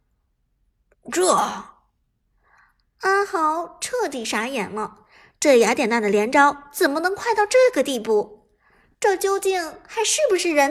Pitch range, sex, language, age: 245-395 Hz, male, Chinese, 50-69